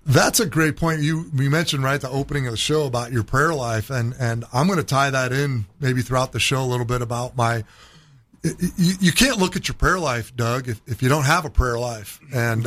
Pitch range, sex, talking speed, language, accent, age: 125-160 Hz, male, 245 wpm, English, American, 30-49